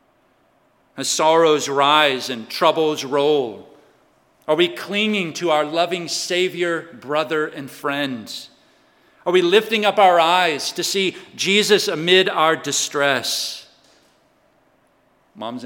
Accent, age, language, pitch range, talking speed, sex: American, 40-59, English, 125-180 Hz, 110 wpm, male